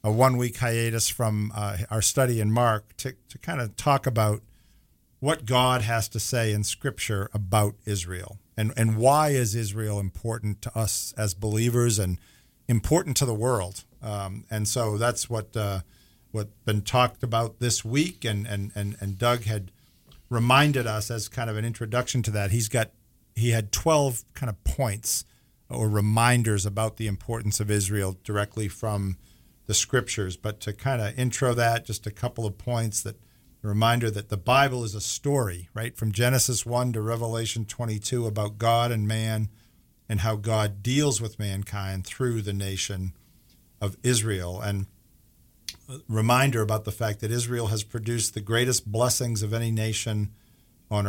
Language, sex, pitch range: English, male, 105-120 Hz